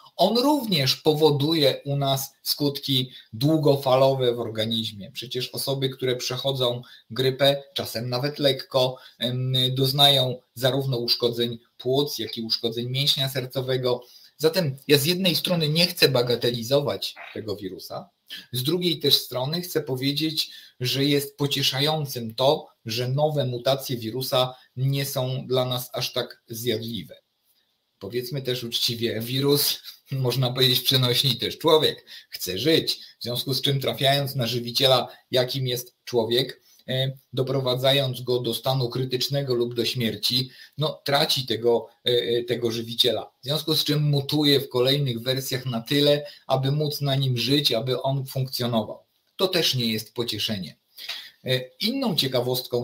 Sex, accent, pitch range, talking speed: male, native, 120-140 Hz, 130 wpm